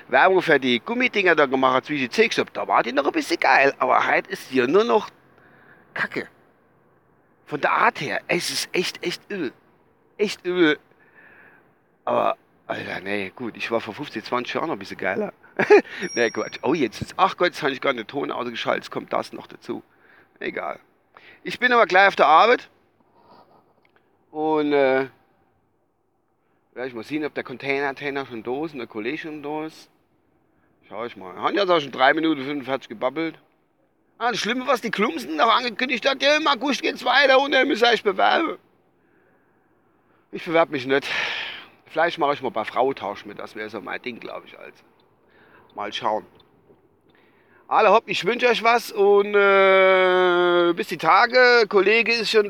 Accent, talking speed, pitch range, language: German, 185 wpm, 140-215 Hz, German